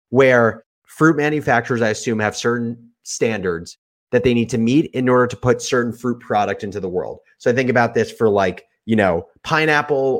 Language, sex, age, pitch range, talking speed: English, male, 30-49, 110-135 Hz, 195 wpm